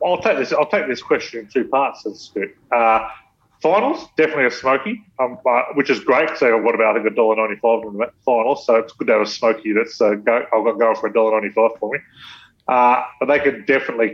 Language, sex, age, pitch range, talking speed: English, male, 30-49, 110-130 Hz, 220 wpm